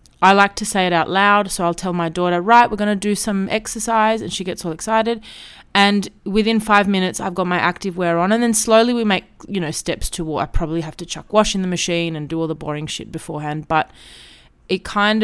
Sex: female